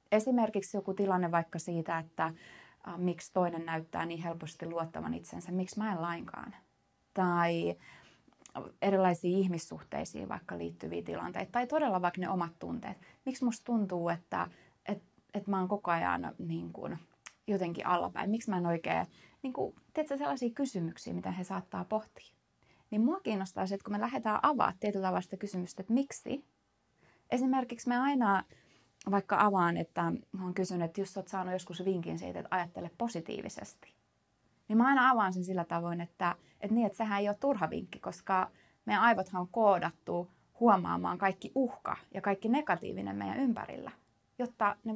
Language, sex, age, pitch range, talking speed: Finnish, female, 20-39, 175-235 Hz, 160 wpm